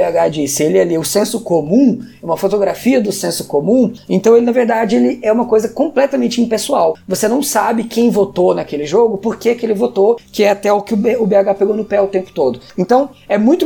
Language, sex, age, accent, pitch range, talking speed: Portuguese, female, 20-39, Brazilian, 170-230 Hz, 215 wpm